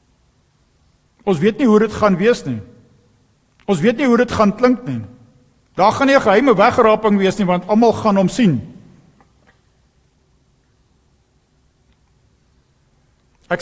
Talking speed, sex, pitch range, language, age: 125 wpm, male, 145-210 Hz, English, 50-69